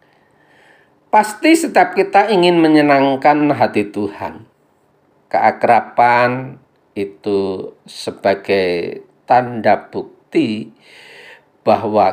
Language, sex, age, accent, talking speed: Indonesian, male, 50-69, native, 65 wpm